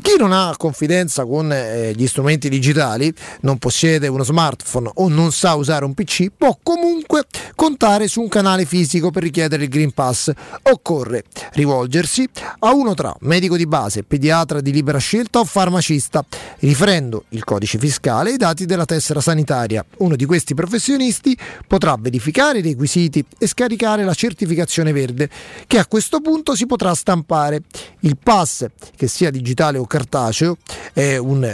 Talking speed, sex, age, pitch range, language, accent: 160 wpm, male, 30-49, 145-200 Hz, Italian, native